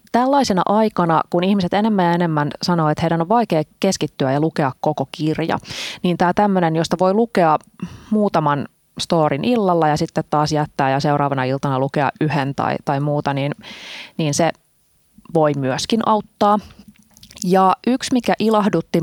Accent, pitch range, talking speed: native, 150-190 Hz, 150 wpm